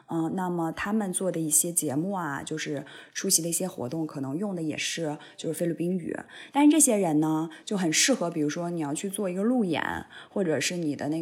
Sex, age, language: female, 20-39, Chinese